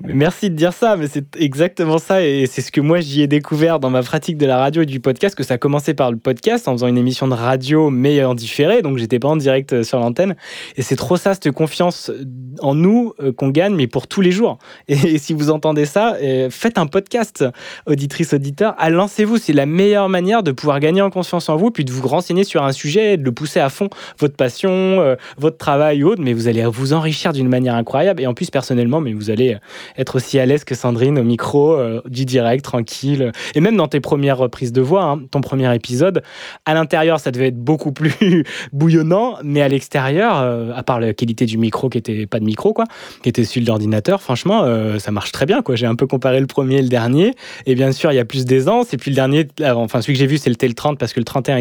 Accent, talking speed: French, 250 wpm